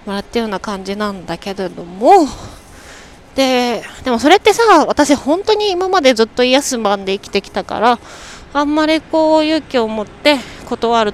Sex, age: female, 20-39